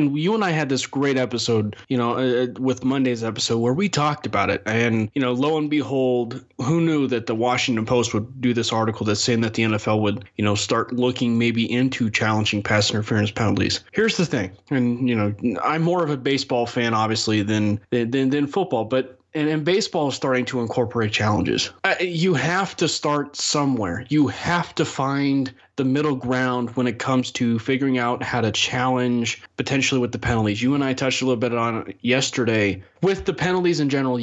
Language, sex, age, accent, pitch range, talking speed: English, male, 20-39, American, 115-135 Hz, 205 wpm